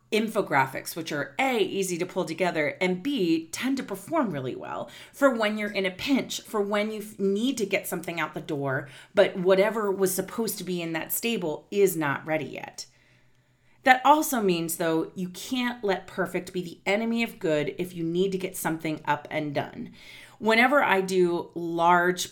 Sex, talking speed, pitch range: female, 190 wpm, 155-200 Hz